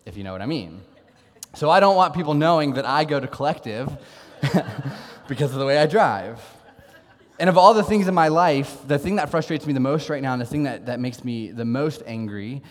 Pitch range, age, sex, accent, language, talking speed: 110-145 Hz, 20-39, male, American, English, 235 wpm